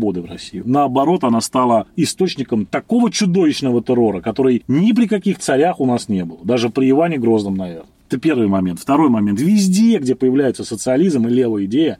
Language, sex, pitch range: Russian, male, 125-195 Hz